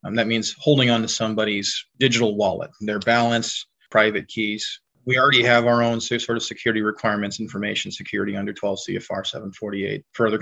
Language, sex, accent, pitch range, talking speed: English, male, American, 110-125 Hz, 175 wpm